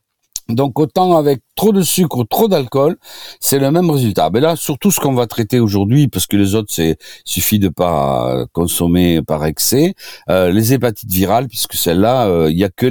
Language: French